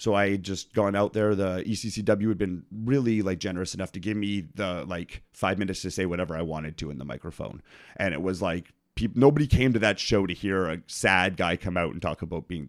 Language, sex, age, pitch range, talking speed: English, male, 30-49, 90-105 Hz, 235 wpm